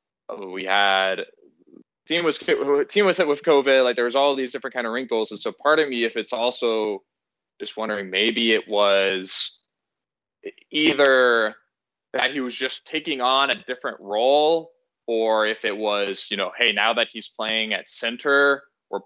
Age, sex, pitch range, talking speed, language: 20-39, male, 105-135 Hz, 175 wpm, English